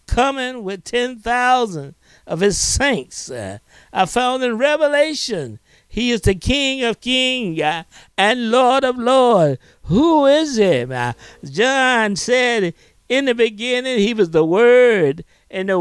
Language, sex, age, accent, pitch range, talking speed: English, male, 60-79, American, 200-290 Hz, 135 wpm